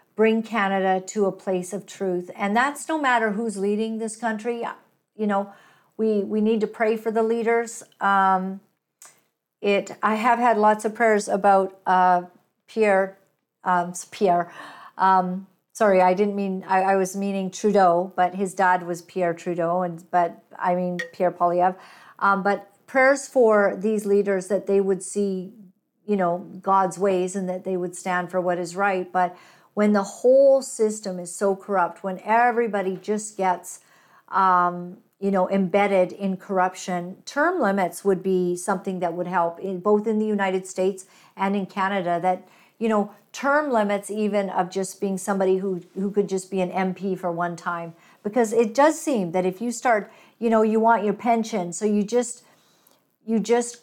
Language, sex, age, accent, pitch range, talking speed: English, female, 50-69, American, 185-215 Hz, 175 wpm